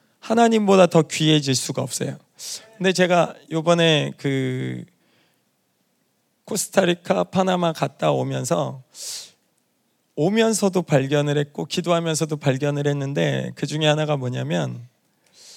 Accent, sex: native, male